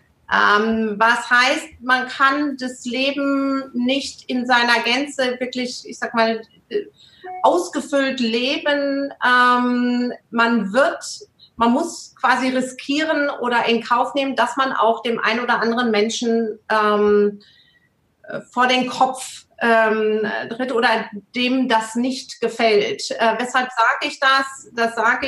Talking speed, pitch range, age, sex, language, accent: 120 wpm, 225-265 Hz, 40-59, female, German, German